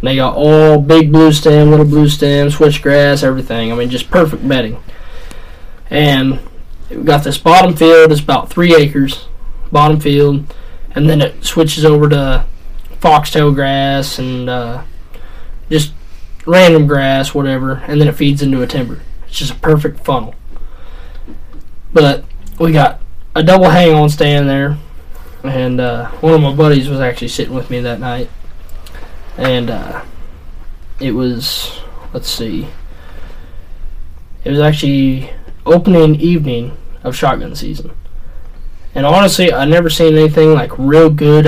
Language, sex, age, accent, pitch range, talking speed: English, male, 20-39, American, 115-150 Hz, 145 wpm